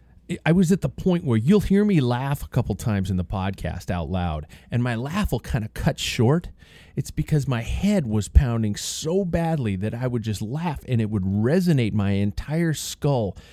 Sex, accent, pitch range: male, American, 80-115 Hz